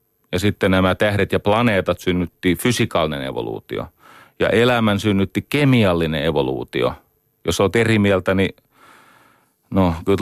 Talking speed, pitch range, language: 125 wpm, 90-120 Hz, Finnish